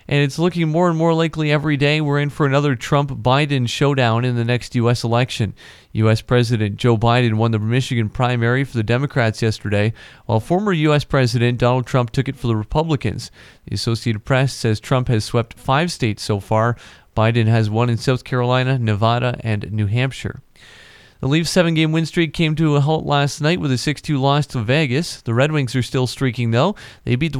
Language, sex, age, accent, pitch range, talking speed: English, male, 40-59, American, 115-145 Hz, 200 wpm